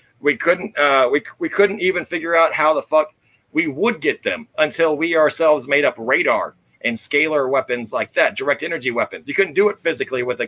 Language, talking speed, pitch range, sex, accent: English, 210 wpm, 140-180 Hz, male, American